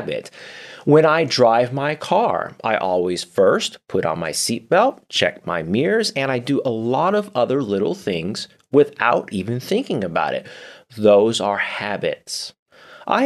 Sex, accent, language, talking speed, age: male, American, English, 150 wpm, 30-49